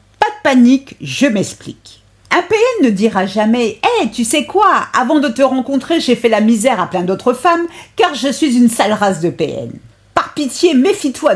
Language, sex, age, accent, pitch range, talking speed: French, female, 50-69, French, 190-315 Hz, 195 wpm